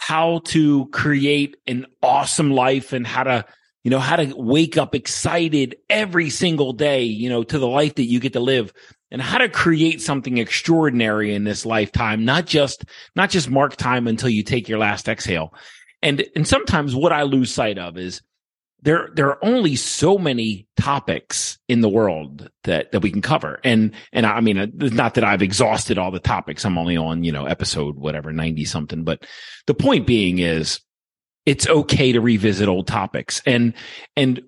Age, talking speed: 30-49, 190 wpm